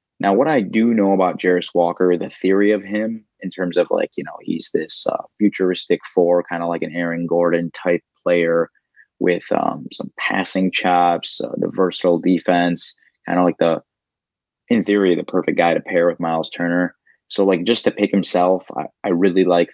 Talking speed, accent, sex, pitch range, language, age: 195 wpm, American, male, 90-100 Hz, English, 20-39